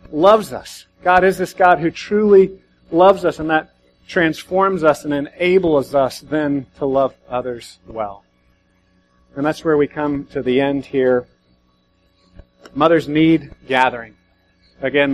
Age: 40-59